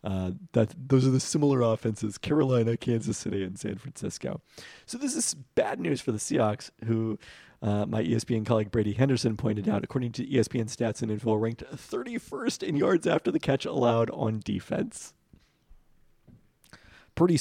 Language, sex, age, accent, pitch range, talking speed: English, male, 40-59, American, 100-120 Hz, 160 wpm